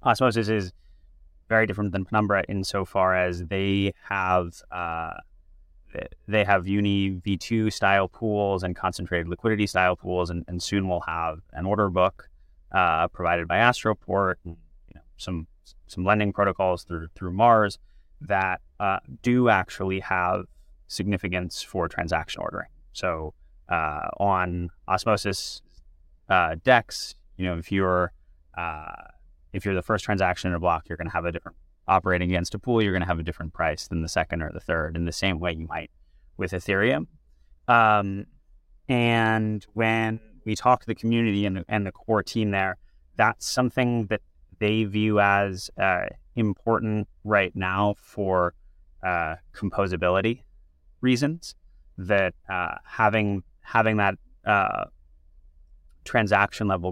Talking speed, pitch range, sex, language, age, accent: 150 wpm, 85-105 Hz, male, English, 20-39, American